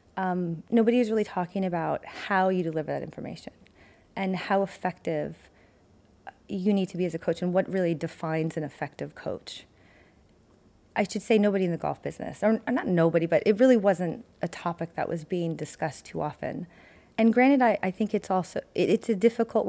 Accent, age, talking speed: American, 30-49, 190 wpm